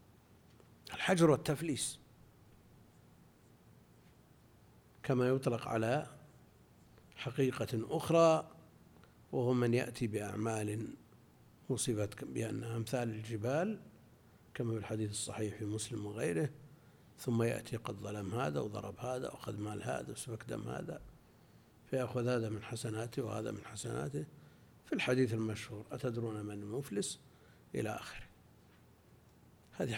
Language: Arabic